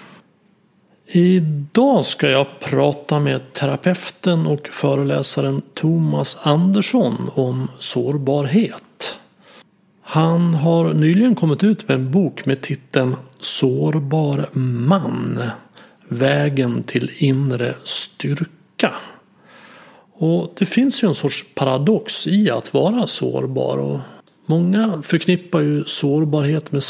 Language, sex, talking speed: Swedish, male, 100 wpm